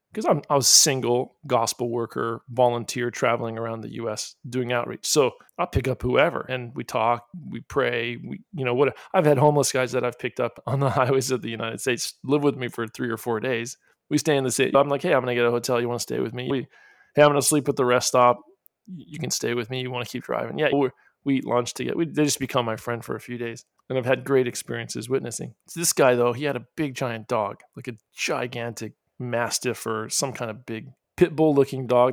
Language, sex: English, male